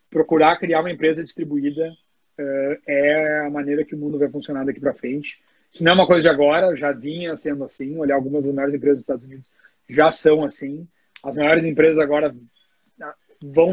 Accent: Brazilian